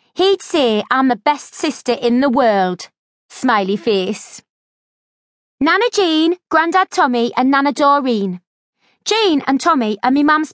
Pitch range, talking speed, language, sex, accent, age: 245-335 Hz, 135 wpm, English, female, British, 30-49